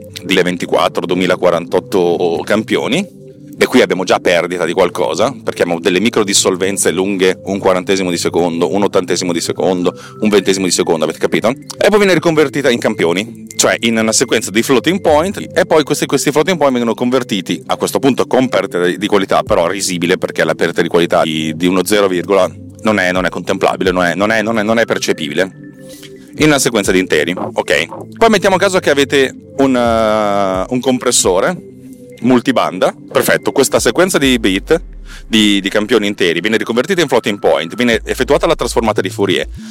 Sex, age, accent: male, 30-49, native